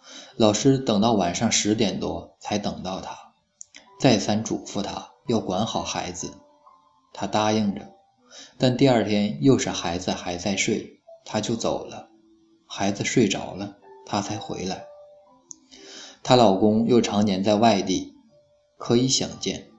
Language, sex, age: Chinese, male, 20-39